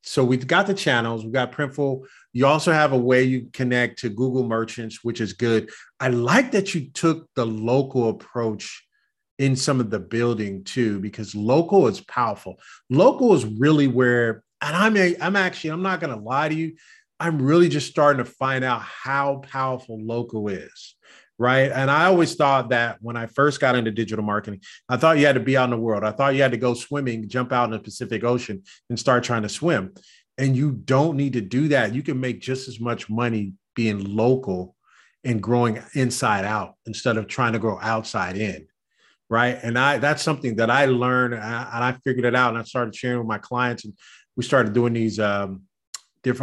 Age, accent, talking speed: 40-59, American, 205 wpm